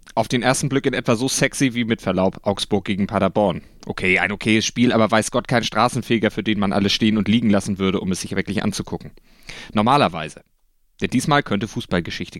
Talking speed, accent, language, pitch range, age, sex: 205 wpm, German, German, 105-130 Hz, 30-49, male